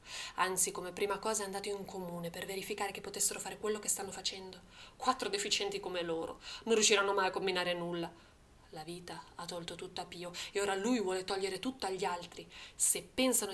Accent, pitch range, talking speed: native, 180-220 Hz, 195 wpm